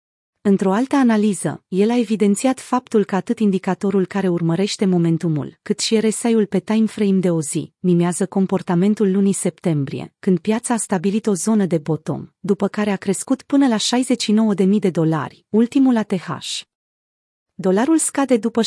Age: 30-49